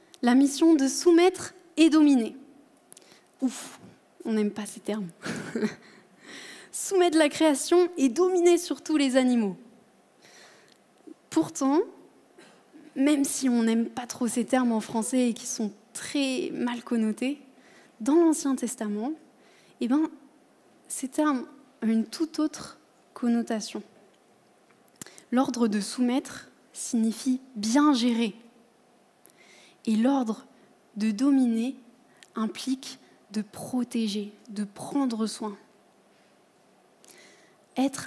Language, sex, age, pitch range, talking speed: French, female, 20-39, 225-295 Hz, 105 wpm